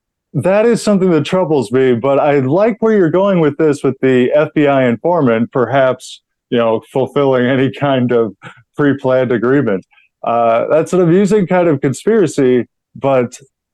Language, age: English, 20-39